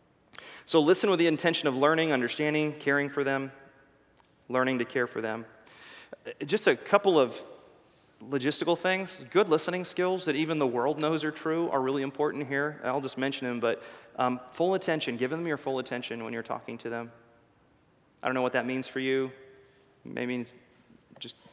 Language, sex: English, male